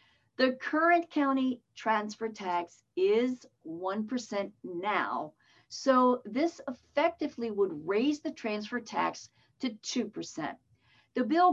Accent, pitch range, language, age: American, 185-265 Hz, English, 50-69